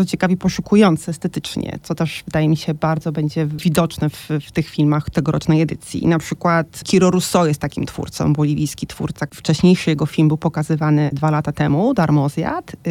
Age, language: 30-49, Polish